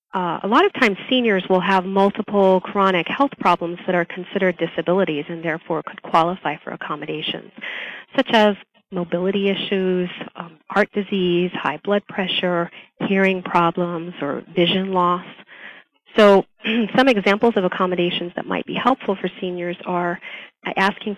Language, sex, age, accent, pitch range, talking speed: English, female, 40-59, American, 175-205 Hz, 140 wpm